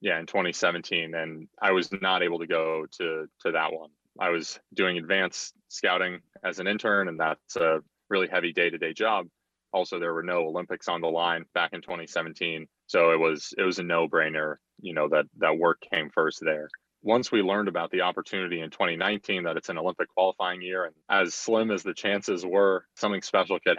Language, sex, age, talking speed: English, male, 30-49, 200 wpm